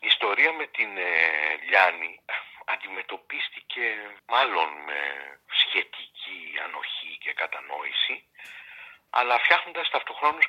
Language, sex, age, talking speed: Greek, male, 50-69, 85 wpm